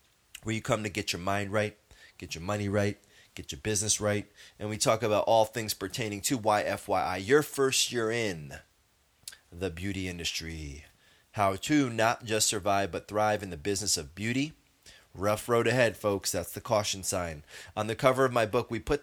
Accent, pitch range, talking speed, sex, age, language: American, 95-110 Hz, 190 wpm, male, 20-39, English